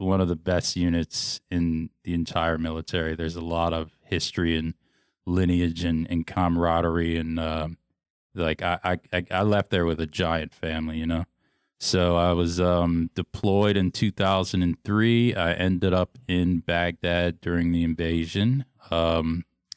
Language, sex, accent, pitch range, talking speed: English, male, American, 85-95 Hz, 150 wpm